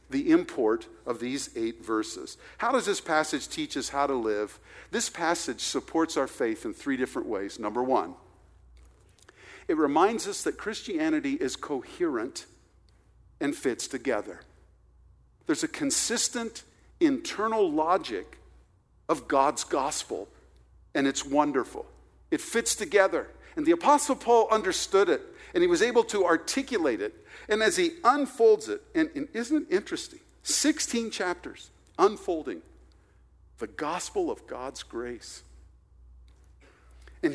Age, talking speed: 50-69, 130 wpm